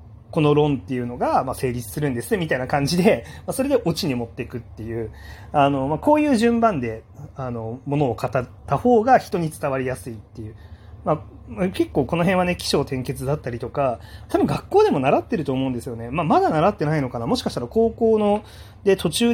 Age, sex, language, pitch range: 30-49, male, Japanese, 115-195 Hz